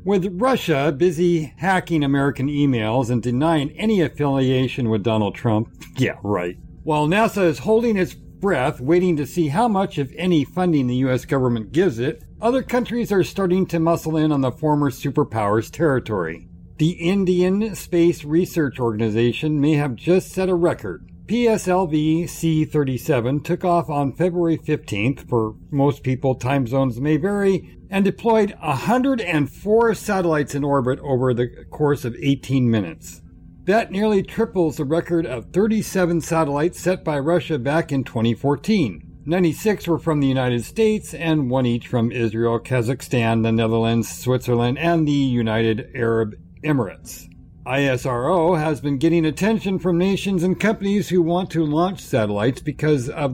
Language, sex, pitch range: English, male, 125-180 Hz